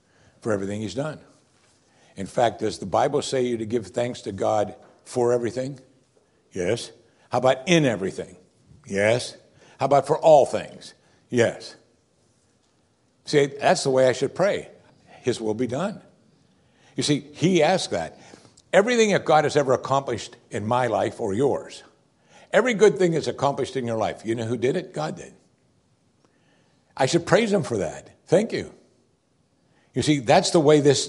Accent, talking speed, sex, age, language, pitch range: American, 165 wpm, male, 60-79, English, 110-150 Hz